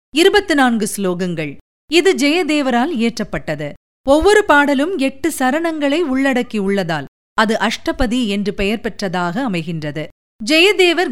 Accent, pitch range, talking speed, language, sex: native, 210-300 Hz, 95 wpm, Tamil, female